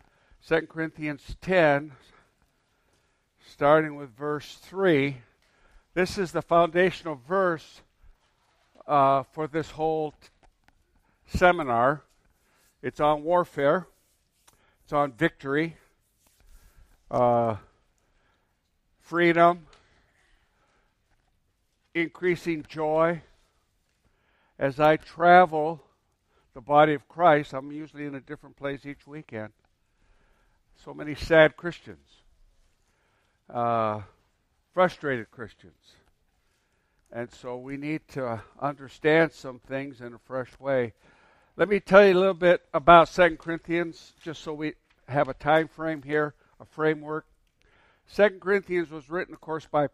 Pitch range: 120-165 Hz